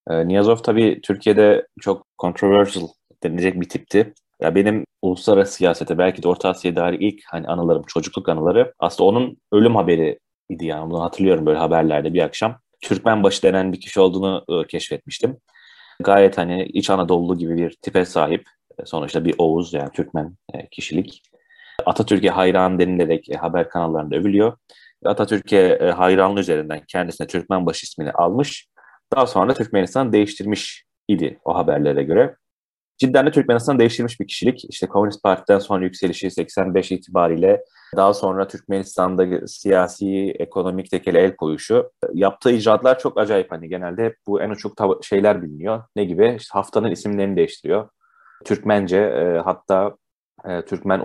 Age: 30-49